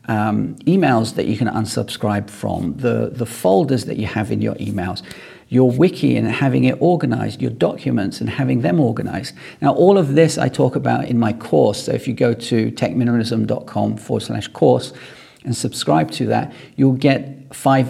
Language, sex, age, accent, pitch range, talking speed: English, male, 40-59, British, 110-135 Hz, 180 wpm